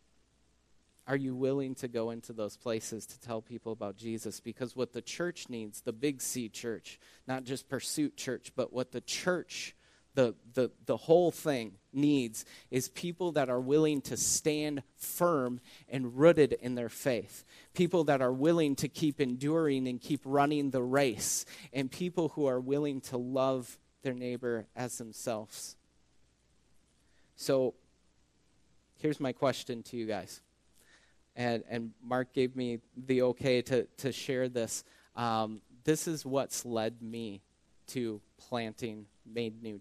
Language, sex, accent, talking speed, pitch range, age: English, male, American, 150 wpm, 110-130 Hz, 30-49